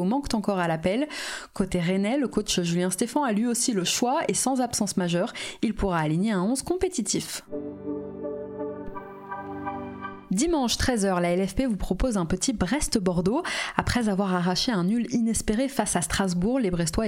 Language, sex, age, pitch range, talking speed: French, female, 20-39, 185-235 Hz, 160 wpm